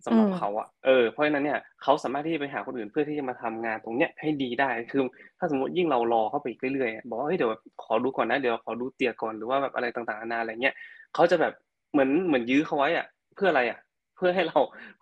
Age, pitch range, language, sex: 20-39, 115-150 Hz, Thai, male